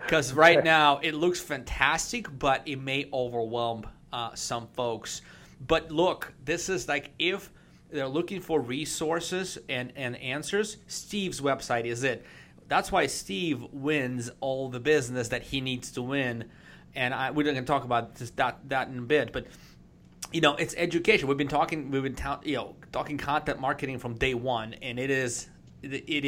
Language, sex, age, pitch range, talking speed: English, male, 30-49, 125-155 Hz, 180 wpm